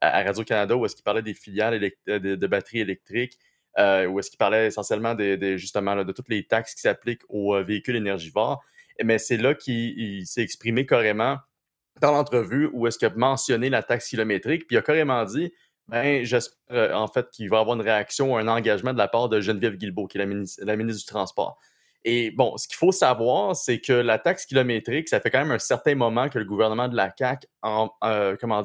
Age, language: 30-49, French